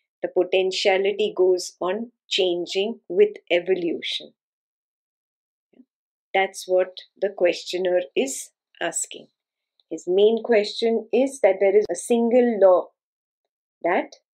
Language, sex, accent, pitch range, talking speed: English, female, Indian, 185-235 Hz, 100 wpm